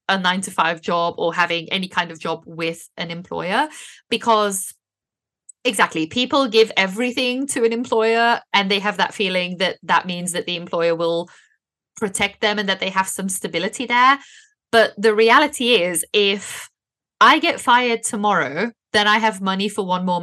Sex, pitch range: female, 185-240 Hz